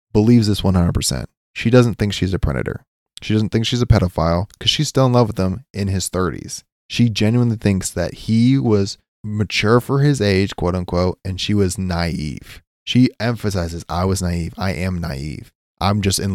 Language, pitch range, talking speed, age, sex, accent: English, 90-120 Hz, 190 wpm, 20-39, male, American